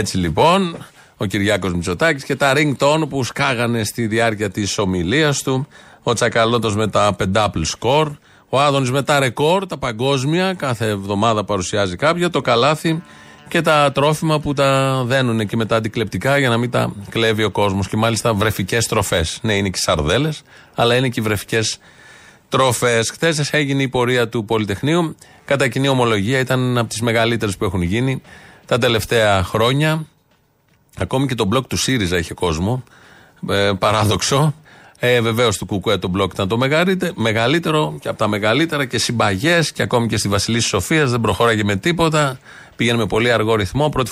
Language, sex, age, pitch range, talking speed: Greek, male, 30-49, 110-140 Hz, 165 wpm